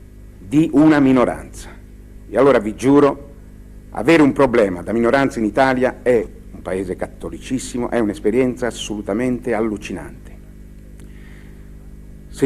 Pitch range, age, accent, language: 95-125 Hz, 60-79, native, Italian